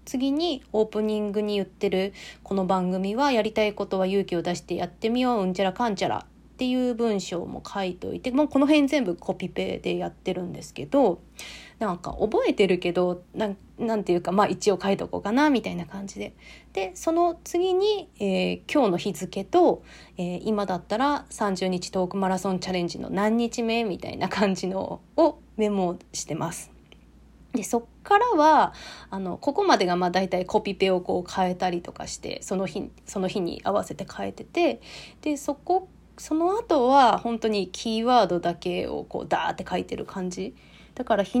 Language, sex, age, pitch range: Japanese, female, 20-39, 185-250 Hz